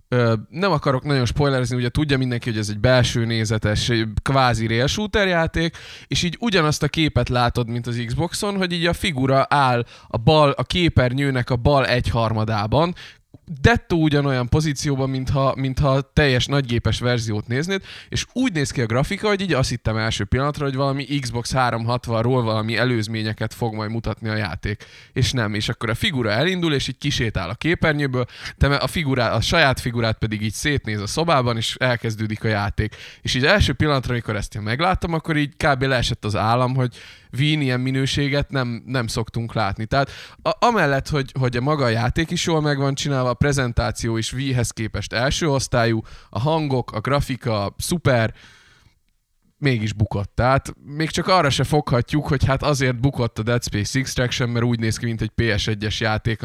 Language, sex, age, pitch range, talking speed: Hungarian, male, 20-39, 110-140 Hz, 175 wpm